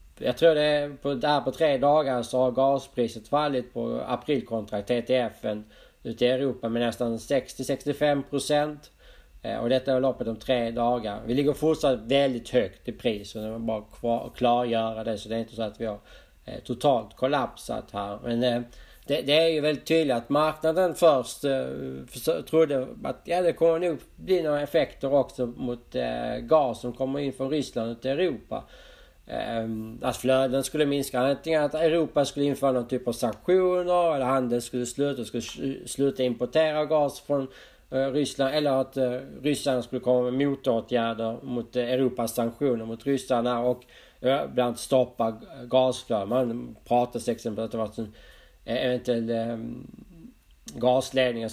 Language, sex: Swedish, male